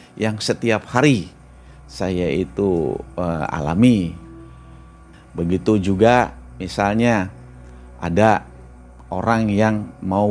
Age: 50-69